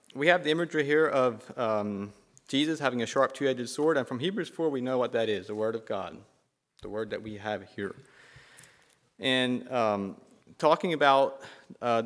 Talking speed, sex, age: 185 wpm, male, 30-49